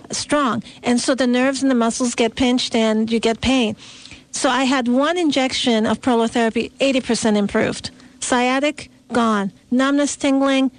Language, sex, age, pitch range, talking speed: English, female, 40-59, 230-265 Hz, 150 wpm